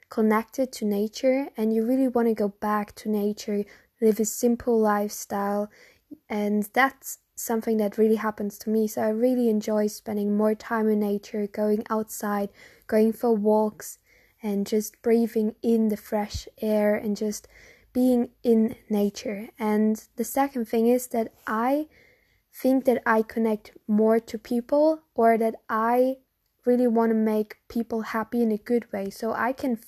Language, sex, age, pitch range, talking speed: English, female, 10-29, 215-245 Hz, 160 wpm